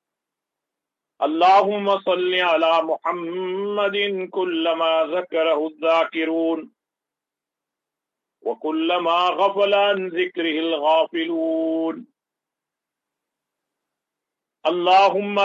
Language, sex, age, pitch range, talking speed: English, male, 50-69, 165-210 Hz, 45 wpm